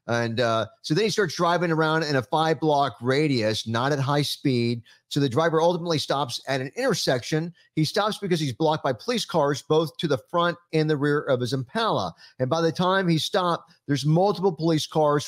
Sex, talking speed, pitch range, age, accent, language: male, 210 wpm, 130-165 Hz, 40-59, American, English